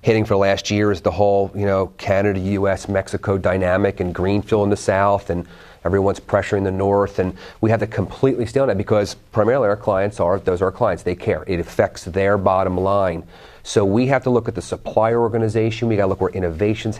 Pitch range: 95-115 Hz